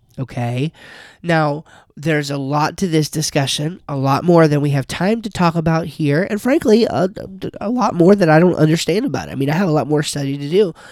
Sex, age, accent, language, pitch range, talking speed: male, 30-49, American, English, 130-165 Hz, 225 wpm